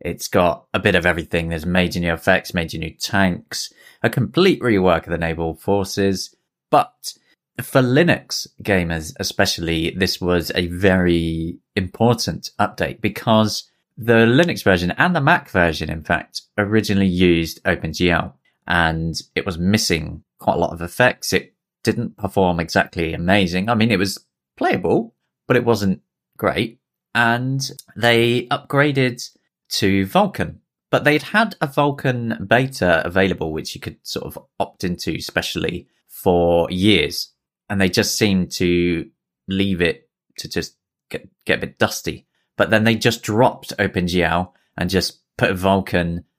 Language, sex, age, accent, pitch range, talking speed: English, male, 20-39, British, 85-115 Hz, 145 wpm